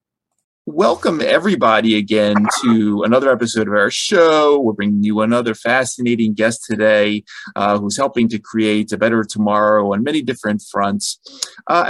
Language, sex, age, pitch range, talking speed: English, male, 30-49, 105-125 Hz, 145 wpm